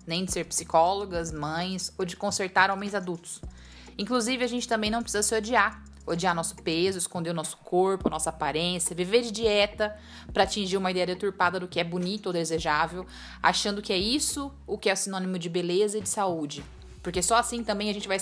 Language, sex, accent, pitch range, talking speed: Portuguese, female, Brazilian, 175-215 Hz, 200 wpm